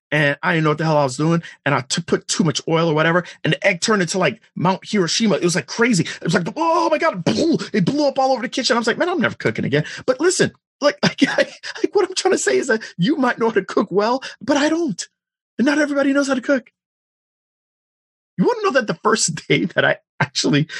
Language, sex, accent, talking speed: English, male, American, 270 wpm